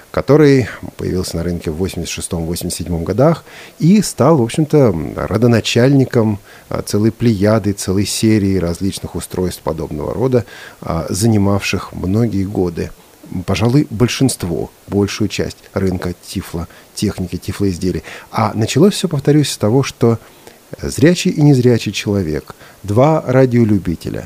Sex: male